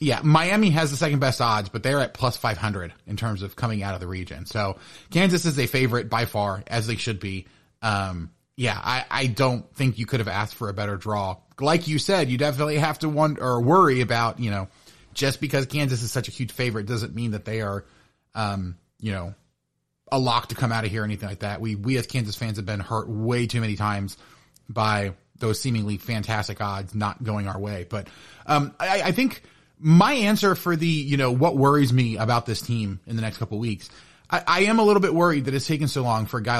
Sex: male